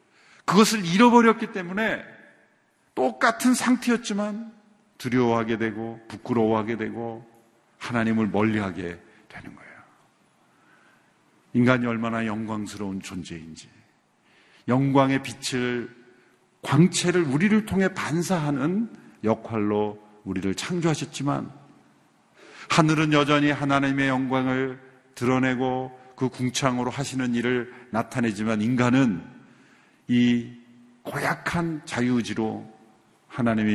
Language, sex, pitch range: Korean, male, 110-145 Hz